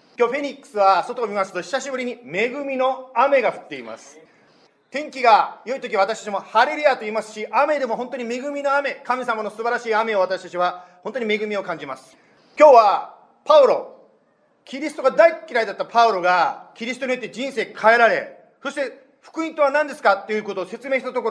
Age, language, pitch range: 40-59, English, 195-275 Hz